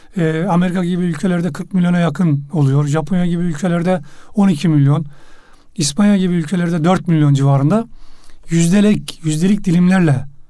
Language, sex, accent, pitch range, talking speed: Turkish, male, native, 150-205 Hz, 120 wpm